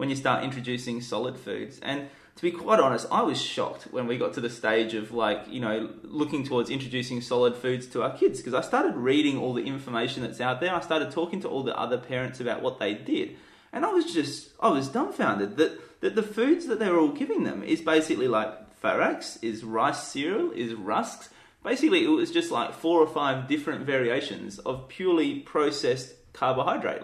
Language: English